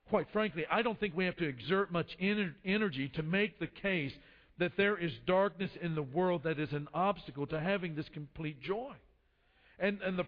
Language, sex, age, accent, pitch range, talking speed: English, male, 50-69, American, 145-210 Hz, 205 wpm